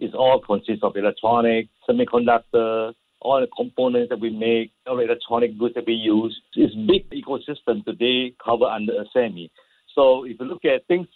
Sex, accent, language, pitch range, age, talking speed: male, Malaysian, English, 110-130 Hz, 60-79, 185 wpm